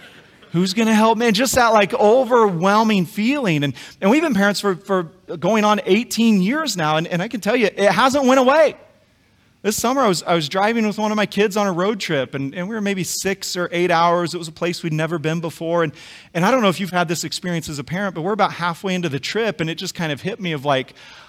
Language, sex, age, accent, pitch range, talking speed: English, male, 40-59, American, 170-250 Hz, 270 wpm